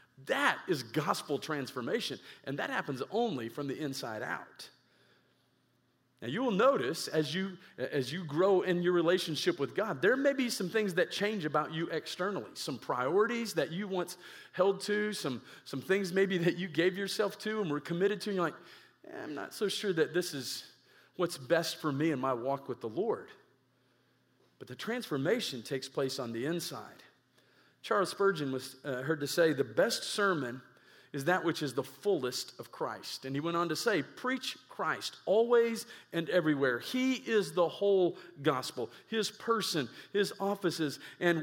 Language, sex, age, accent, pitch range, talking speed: English, male, 40-59, American, 145-200 Hz, 180 wpm